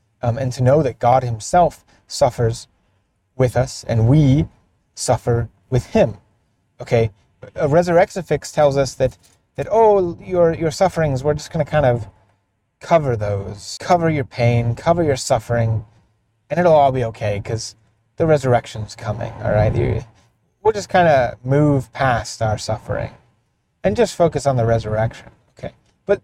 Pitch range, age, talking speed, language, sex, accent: 115-155 Hz, 30-49, 155 wpm, English, male, American